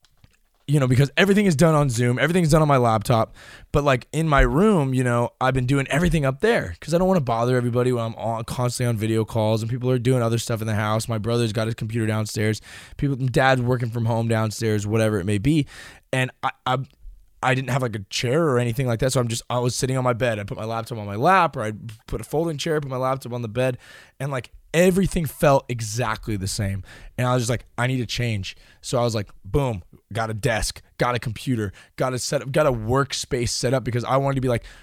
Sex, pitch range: male, 110-140 Hz